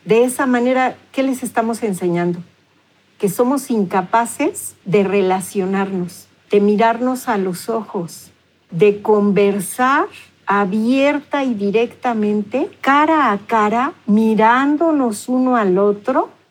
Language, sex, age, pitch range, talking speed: Spanish, female, 50-69, 205-255 Hz, 105 wpm